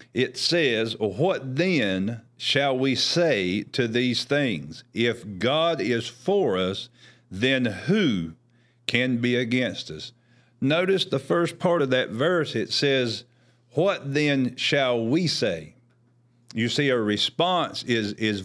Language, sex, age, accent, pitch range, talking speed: English, male, 50-69, American, 115-135 Hz, 135 wpm